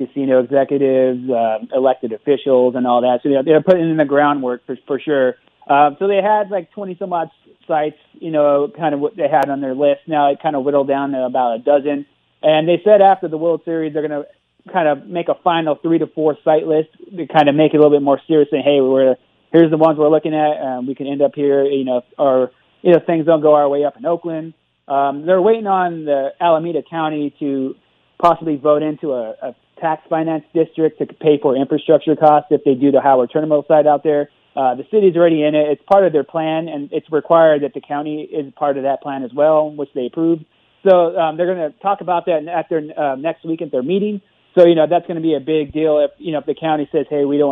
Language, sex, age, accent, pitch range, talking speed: English, male, 30-49, American, 140-165 Hz, 250 wpm